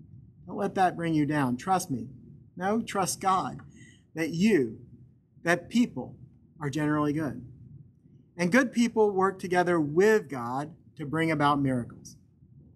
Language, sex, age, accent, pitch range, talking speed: English, male, 40-59, American, 135-180 Hz, 135 wpm